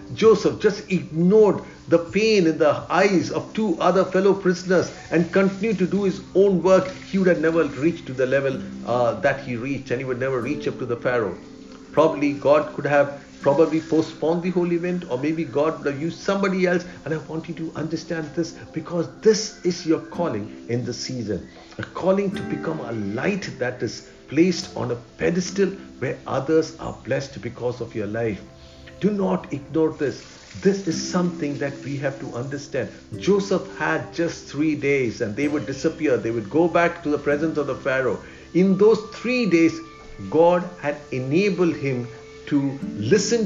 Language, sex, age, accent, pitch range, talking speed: English, male, 50-69, Indian, 135-180 Hz, 185 wpm